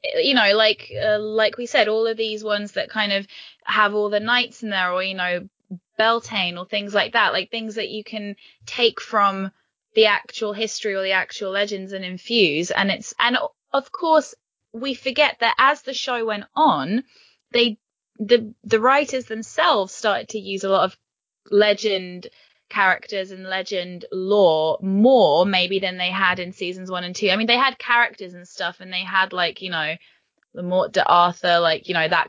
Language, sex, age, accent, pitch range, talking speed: English, female, 20-39, British, 180-225 Hz, 190 wpm